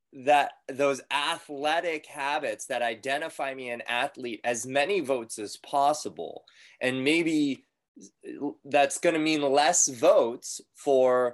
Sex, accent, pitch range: male, American, 115-140 Hz